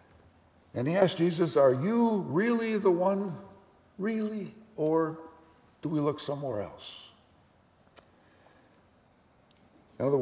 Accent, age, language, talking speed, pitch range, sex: American, 60-79, English, 105 wpm, 130-195 Hz, male